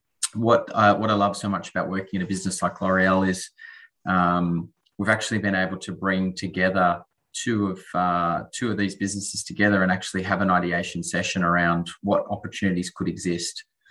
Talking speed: 180 wpm